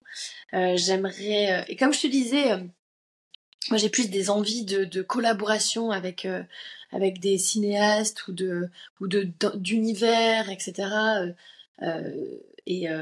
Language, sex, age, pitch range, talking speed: French, female, 20-39, 180-215 Hz, 140 wpm